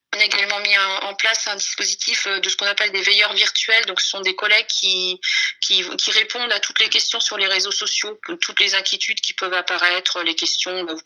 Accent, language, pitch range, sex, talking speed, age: French, French, 180-220 Hz, female, 230 wpm, 40-59